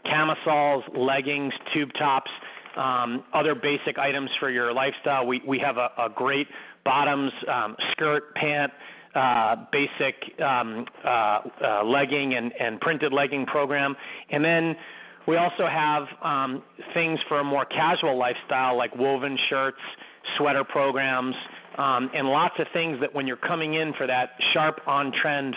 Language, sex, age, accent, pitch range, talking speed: English, male, 40-59, American, 130-150 Hz, 150 wpm